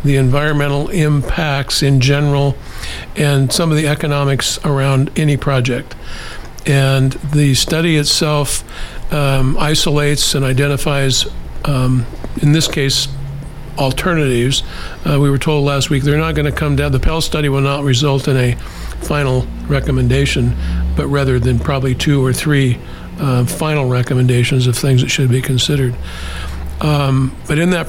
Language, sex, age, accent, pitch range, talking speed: English, male, 50-69, American, 130-145 Hz, 145 wpm